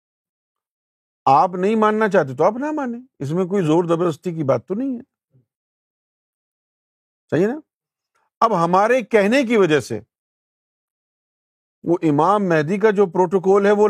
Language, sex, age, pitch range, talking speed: Urdu, male, 50-69, 140-215 Hz, 145 wpm